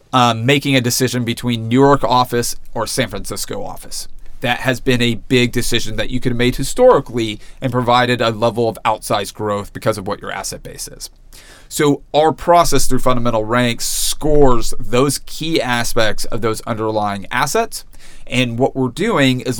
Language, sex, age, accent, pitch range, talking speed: Swedish, male, 30-49, American, 115-135 Hz, 175 wpm